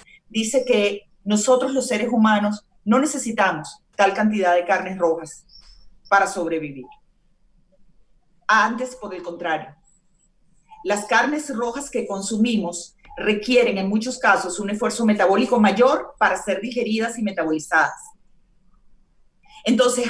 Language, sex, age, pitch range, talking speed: Spanish, female, 40-59, 185-240 Hz, 115 wpm